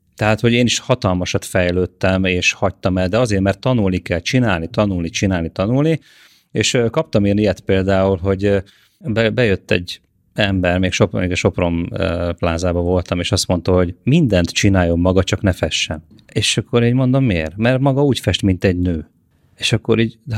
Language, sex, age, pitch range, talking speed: Hungarian, male, 30-49, 90-115 Hz, 175 wpm